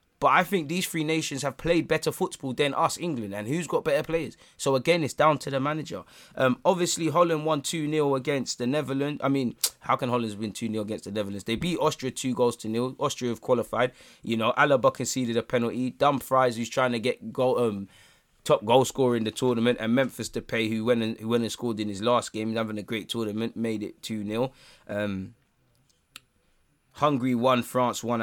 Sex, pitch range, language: male, 120-150 Hz, English